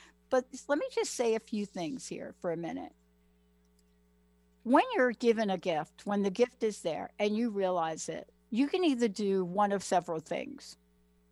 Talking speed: 180 wpm